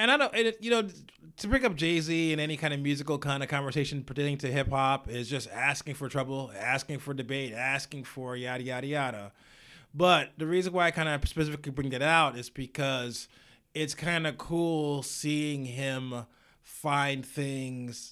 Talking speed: 185 wpm